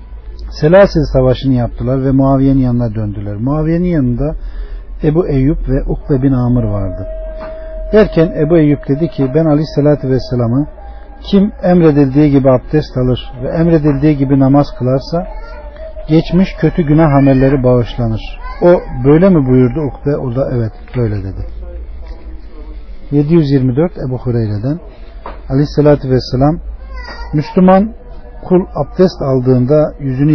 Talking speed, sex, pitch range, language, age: 125 wpm, male, 125-160 Hz, Turkish, 50-69